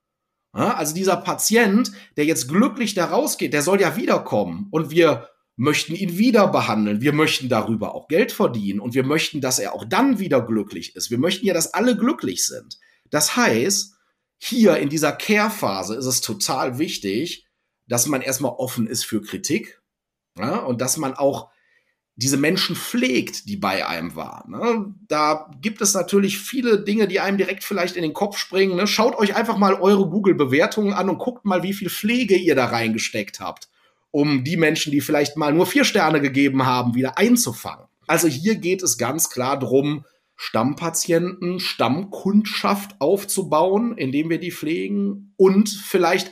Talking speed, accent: 165 wpm, German